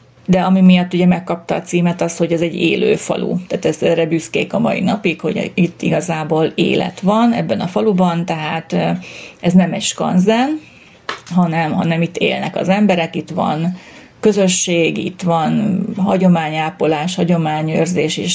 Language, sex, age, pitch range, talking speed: Hungarian, female, 30-49, 165-190 Hz, 145 wpm